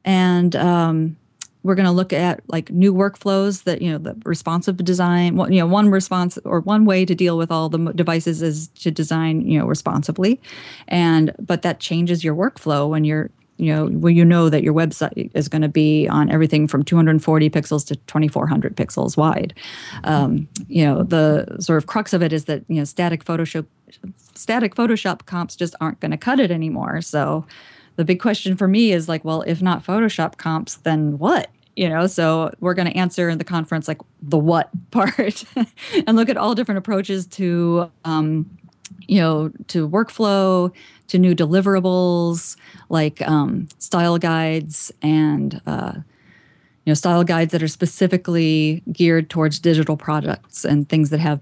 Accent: American